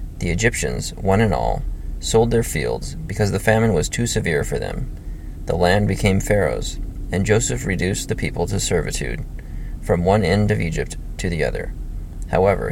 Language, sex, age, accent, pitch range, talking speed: English, male, 30-49, American, 85-105 Hz, 170 wpm